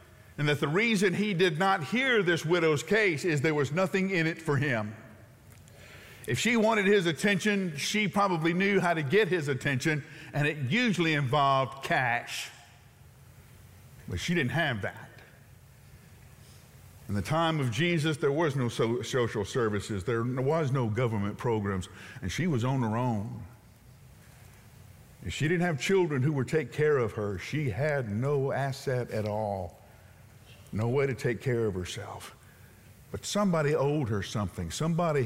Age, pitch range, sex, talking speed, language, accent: 50-69, 115-160 Hz, male, 160 wpm, English, American